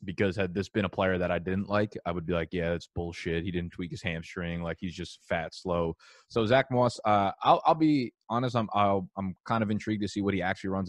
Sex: male